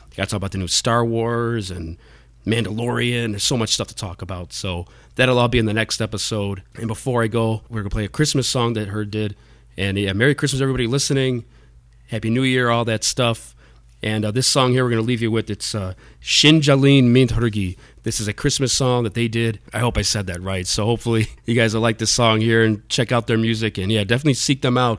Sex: male